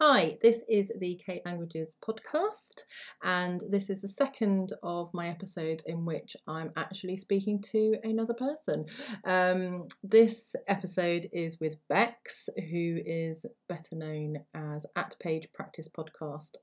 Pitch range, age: 155-195 Hz, 30-49